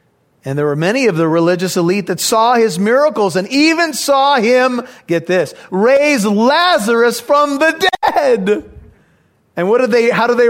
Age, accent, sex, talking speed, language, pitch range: 40-59, American, male, 170 wpm, English, 150-205 Hz